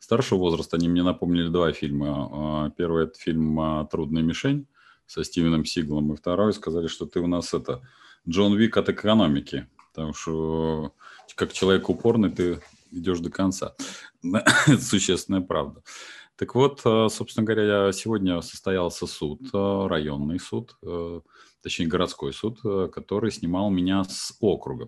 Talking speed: 135 wpm